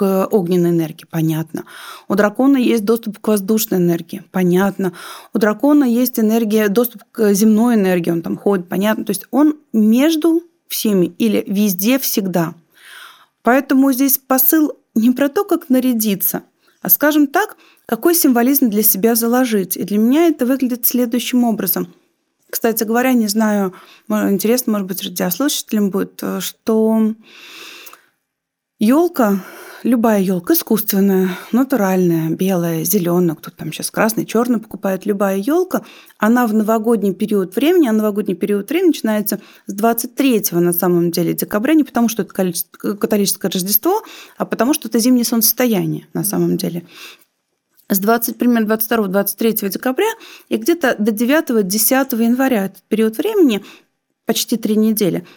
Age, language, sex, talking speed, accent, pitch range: 30-49, Russian, female, 135 wpm, native, 200-260 Hz